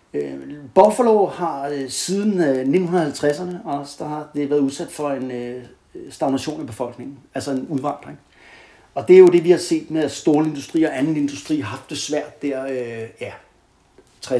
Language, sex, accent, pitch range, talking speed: Danish, male, native, 130-160 Hz, 155 wpm